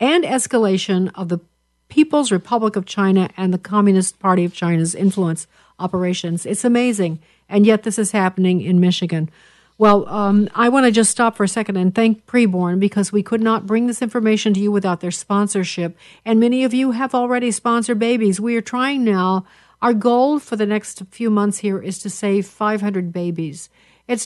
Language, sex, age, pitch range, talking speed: English, female, 50-69, 190-230 Hz, 190 wpm